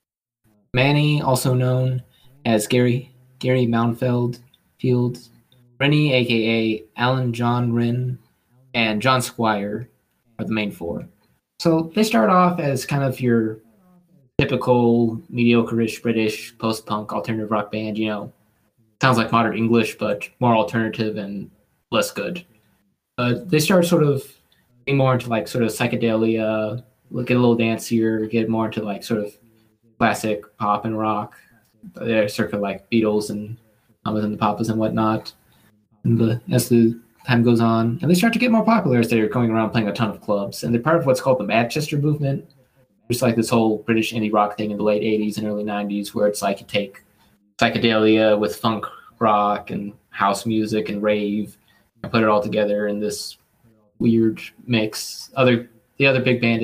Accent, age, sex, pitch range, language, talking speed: American, 20-39, male, 110-125 Hz, English, 170 wpm